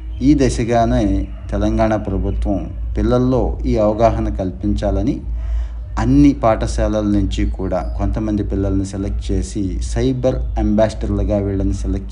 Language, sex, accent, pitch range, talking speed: Telugu, male, native, 95-110 Hz, 100 wpm